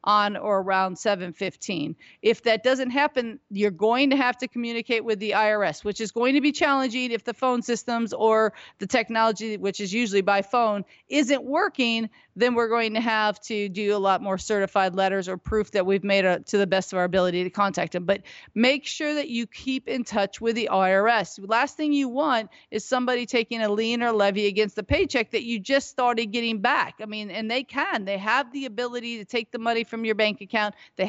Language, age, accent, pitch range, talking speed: English, 40-59, American, 205-245 Hz, 220 wpm